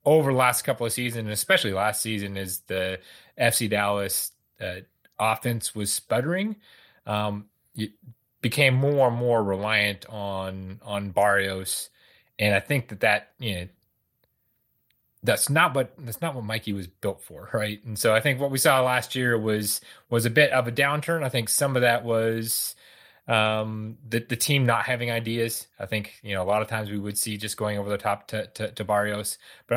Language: English